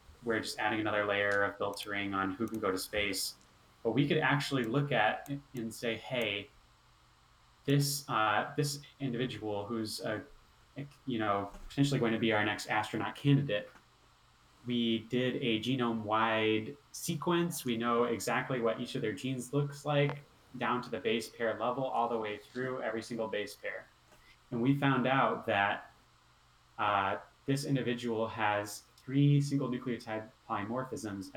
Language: English